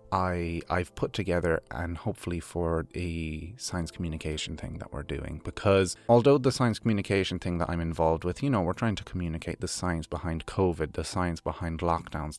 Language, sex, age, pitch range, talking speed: English, male, 30-49, 85-120 Hz, 185 wpm